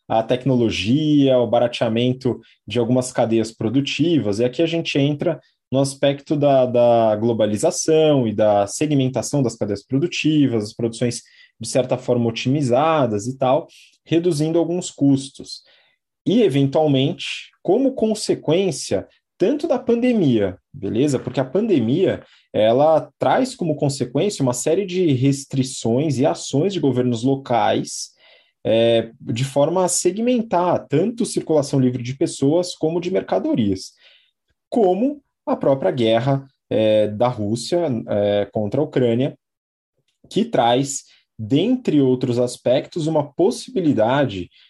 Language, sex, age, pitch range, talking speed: Portuguese, male, 20-39, 120-155 Hz, 115 wpm